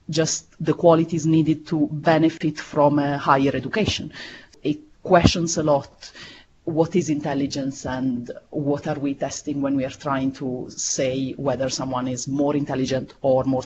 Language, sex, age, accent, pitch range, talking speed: English, female, 40-59, Italian, 145-190 Hz, 155 wpm